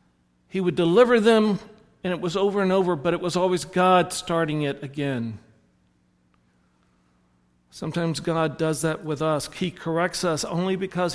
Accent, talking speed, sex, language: American, 155 wpm, male, English